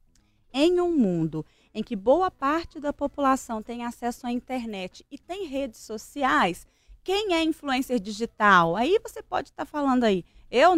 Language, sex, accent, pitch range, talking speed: Portuguese, female, Brazilian, 195-265 Hz, 155 wpm